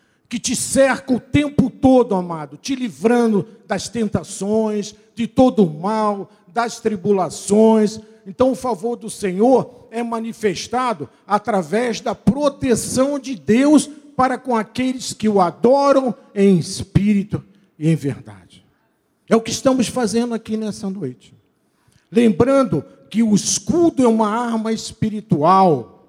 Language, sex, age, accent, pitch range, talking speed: Portuguese, male, 50-69, Brazilian, 180-235 Hz, 130 wpm